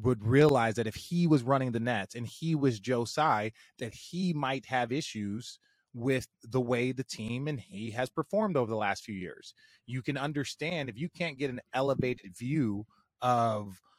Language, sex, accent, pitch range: English, male, American, 120-150 Hz